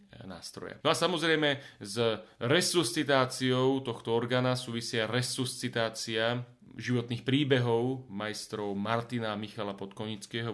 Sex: male